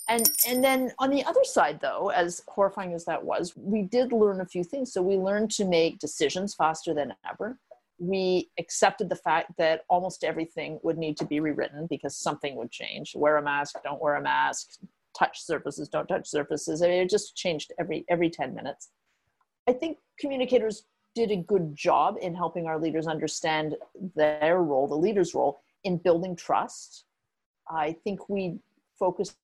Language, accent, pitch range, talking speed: English, American, 160-205 Hz, 180 wpm